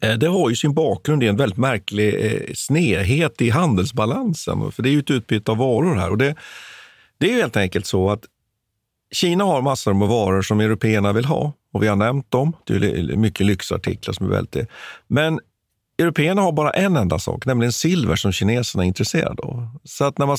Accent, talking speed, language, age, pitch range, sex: native, 205 wpm, Swedish, 50-69, 100-135 Hz, male